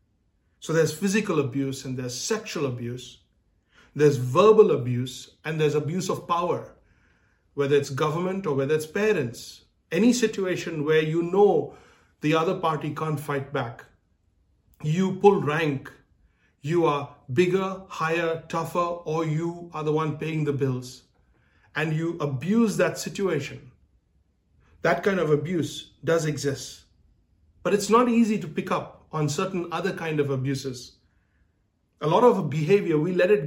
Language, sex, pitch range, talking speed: English, male, 120-170 Hz, 145 wpm